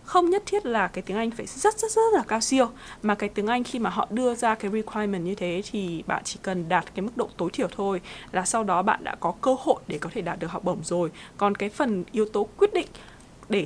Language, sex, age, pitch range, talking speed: Vietnamese, female, 20-39, 180-230 Hz, 275 wpm